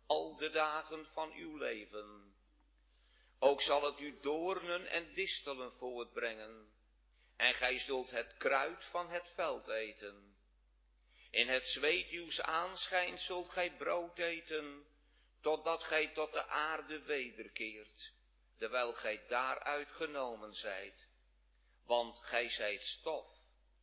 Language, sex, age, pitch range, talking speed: Dutch, male, 50-69, 105-155 Hz, 115 wpm